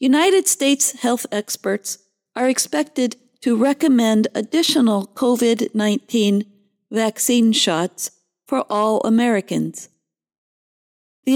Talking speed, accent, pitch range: 85 wpm, American, 195-255 Hz